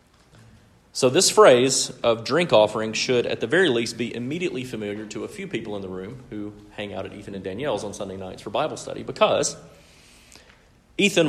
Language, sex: English, male